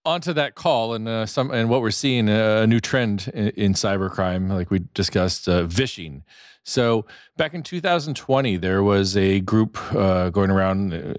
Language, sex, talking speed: English, male, 175 wpm